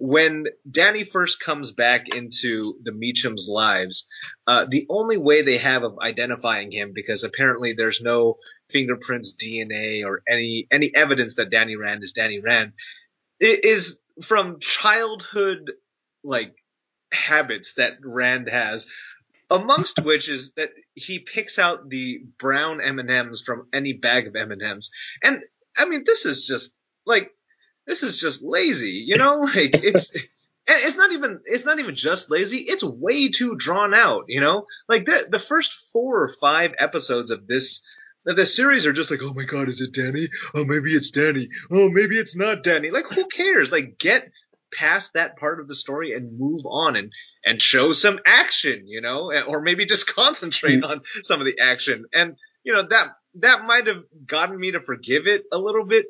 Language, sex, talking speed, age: English, male, 180 wpm, 30-49